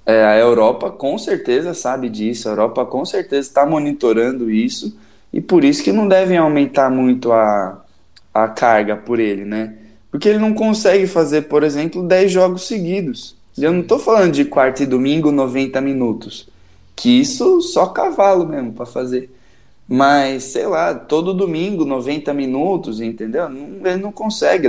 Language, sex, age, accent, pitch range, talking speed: Portuguese, male, 20-39, Brazilian, 125-200 Hz, 160 wpm